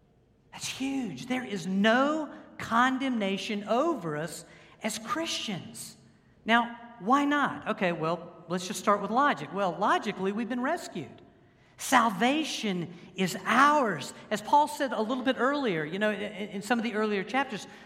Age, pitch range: 50-69, 190-255 Hz